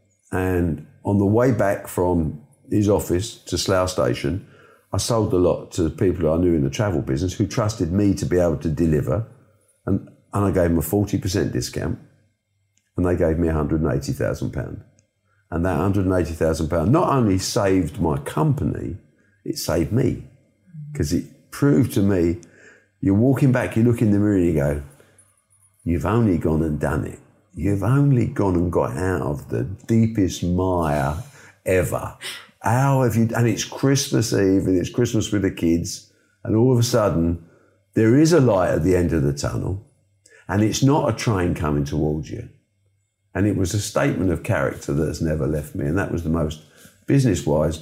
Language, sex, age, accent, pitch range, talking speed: English, male, 50-69, British, 85-115 Hz, 180 wpm